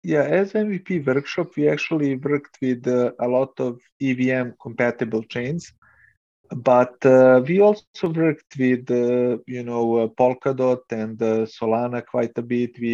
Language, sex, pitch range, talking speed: English, male, 120-145 Hz, 150 wpm